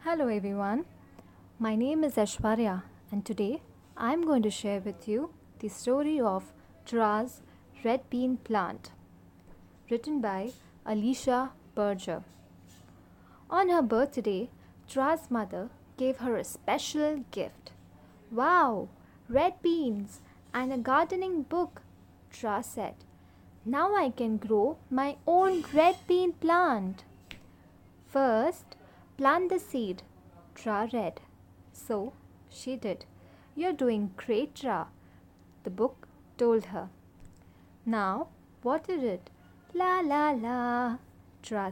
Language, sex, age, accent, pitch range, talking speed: English, female, 20-39, Indian, 200-295 Hz, 110 wpm